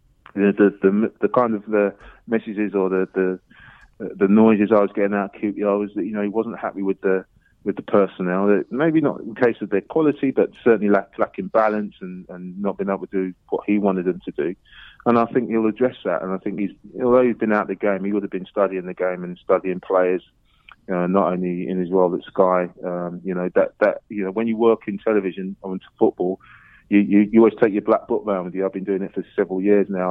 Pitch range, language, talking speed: 95-110 Hz, English, 255 wpm